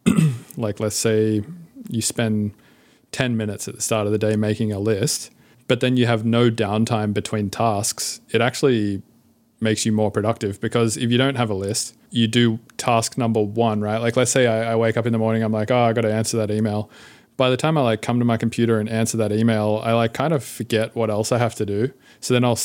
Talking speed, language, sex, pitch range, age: 235 wpm, English, male, 105-115 Hz, 20-39